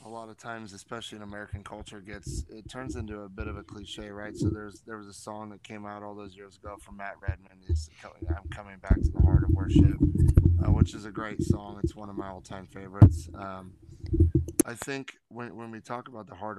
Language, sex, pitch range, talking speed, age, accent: English, male, 100-110 Hz, 235 wpm, 20-39, American